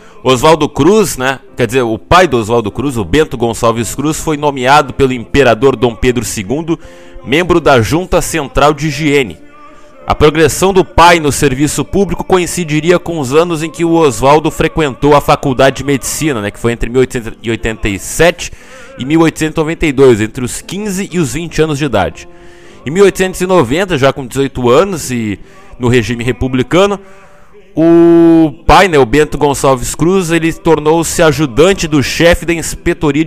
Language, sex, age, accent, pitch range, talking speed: Portuguese, male, 20-39, Brazilian, 125-165 Hz, 155 wpm